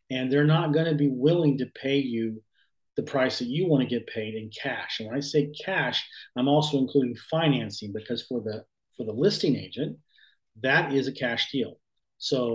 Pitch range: 120-145 Hz